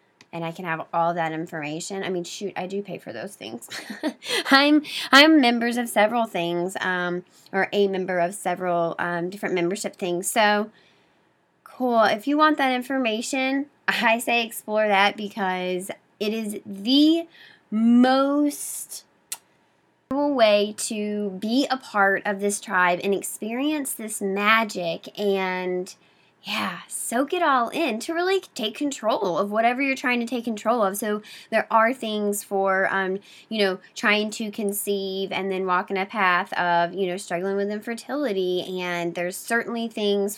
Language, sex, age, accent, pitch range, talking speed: English, female, 20-39, American, 180-230 Hz, 155 wpm